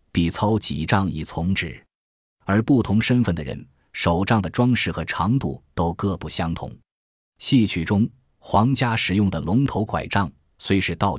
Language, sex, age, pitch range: Chinese, male, 20-39, 85-115 Hz